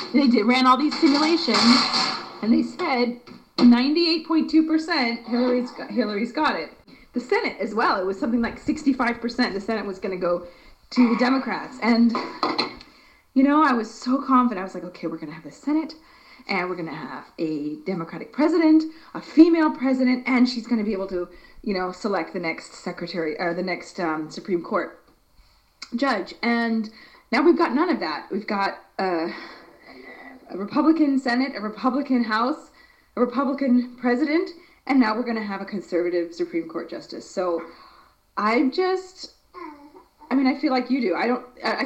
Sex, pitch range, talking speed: female, 190-285 Hz, 175 wpm